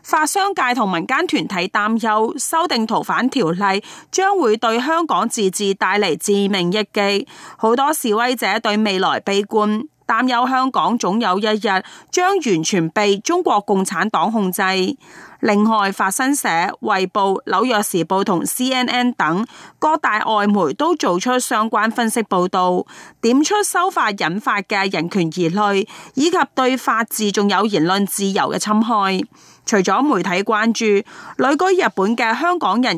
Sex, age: female, 30-49